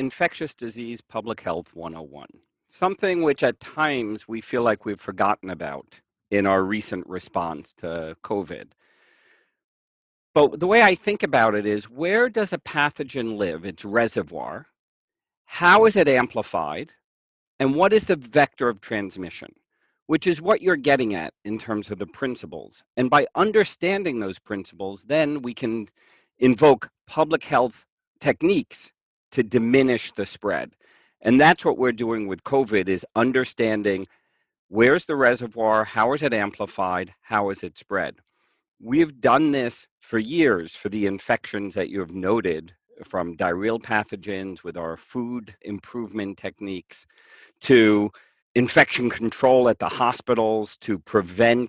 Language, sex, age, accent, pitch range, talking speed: English, male, 50-69, American, 100-140 Hz, 140 wpm